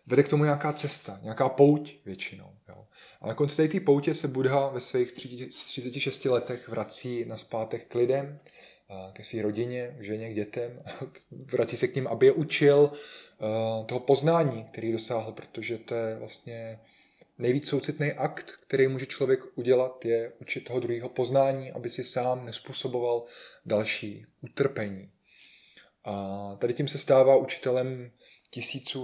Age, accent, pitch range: 20-39, native, 110-130 Hz